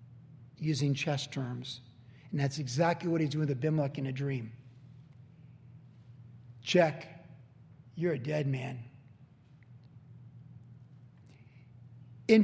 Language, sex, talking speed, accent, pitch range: English, male, 95 wpm, American, 135-180 Hz